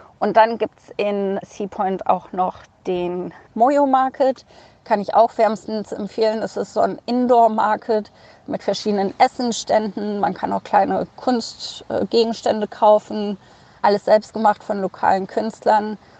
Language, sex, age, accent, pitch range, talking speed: German, female, 20-39, German, 190-225 Hz, 135 wpm